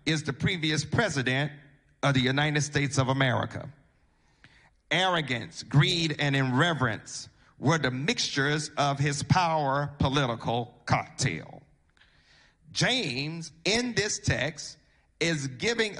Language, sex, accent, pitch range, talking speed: English, male, American, 140-170 Hz, 105 wpm